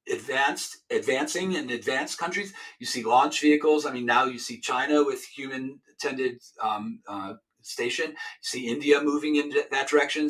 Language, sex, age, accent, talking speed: English, male, 50-69, American, 155 wpm